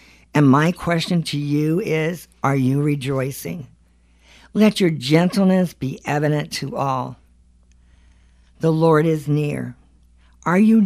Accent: American